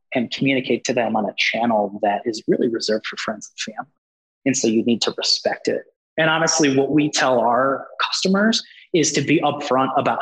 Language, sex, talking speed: English, male, 200 wpm